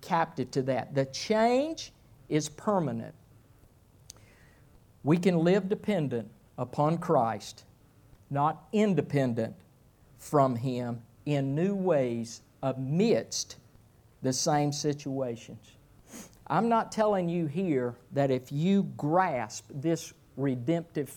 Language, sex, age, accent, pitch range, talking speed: English, male, 50-69, American, 125-185 Hz, 100 wpm